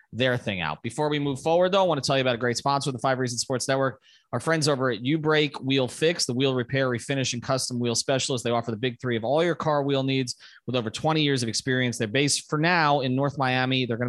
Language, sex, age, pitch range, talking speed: English, male, 30-49, 120-145 Hz, 275 wpm